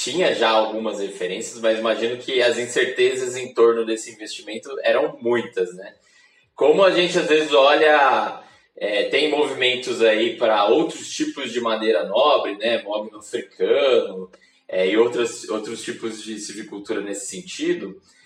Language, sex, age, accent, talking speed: Portuguese, male, 20-39, Brazilian, 145 wpm